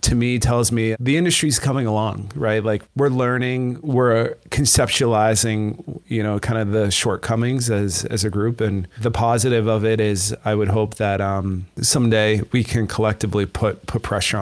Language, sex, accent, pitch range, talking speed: English, male, American, 105-125 Hz, 175 wpm